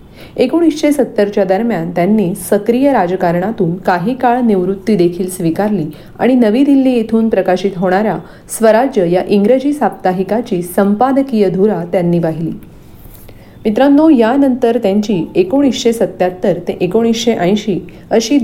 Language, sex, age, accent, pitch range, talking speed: Marathi, female, 40-59, native, 180-230 Hz, 60 wpm